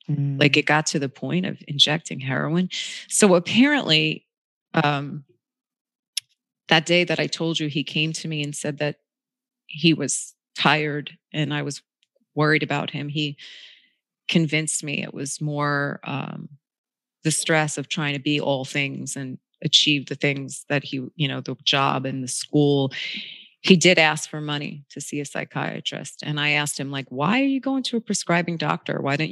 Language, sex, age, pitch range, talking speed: English, female, 30-49, 140-160 Hz, 175 wpm